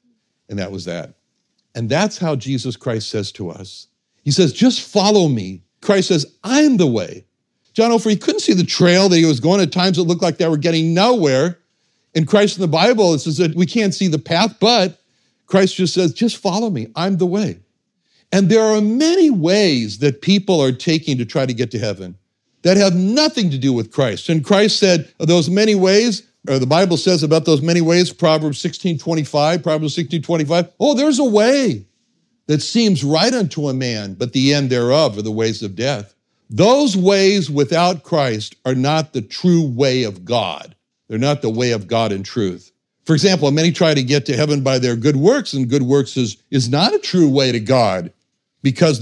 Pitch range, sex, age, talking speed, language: 130-190 Hz, male, 60-79, 210 wpm, English